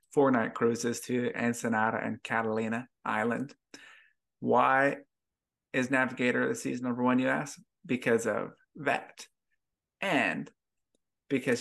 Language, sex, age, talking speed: English, male, 20-39, 110 wpm